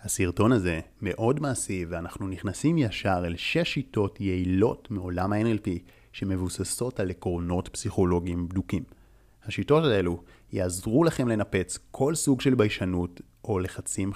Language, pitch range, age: Hebrew, 95-125 Hz, 30-49